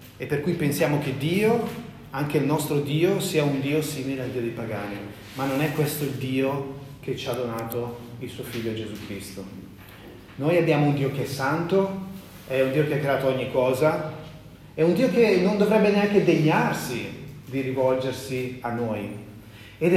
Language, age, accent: Italian, 30-49, native